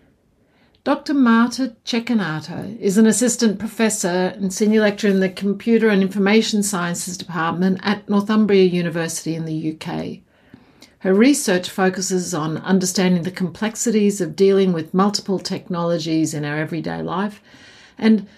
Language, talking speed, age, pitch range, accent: English, 130 wpm, 50-69, 175-215 Hz, Australian